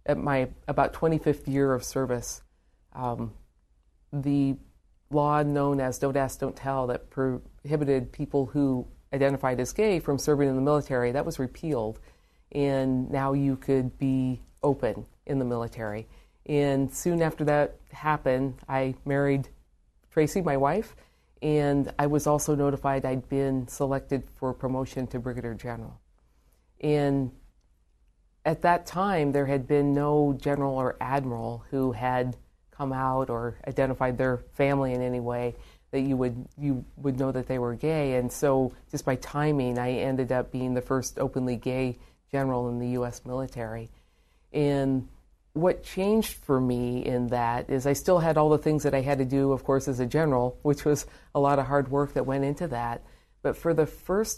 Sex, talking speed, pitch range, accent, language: female, 170 wpm, 125-145 Hz, American, English